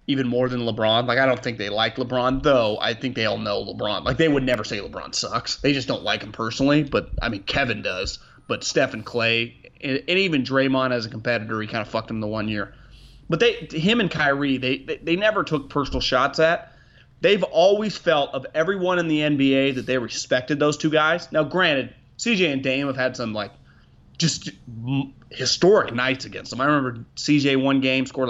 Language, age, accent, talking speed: English, 30-49, American, 215 wpm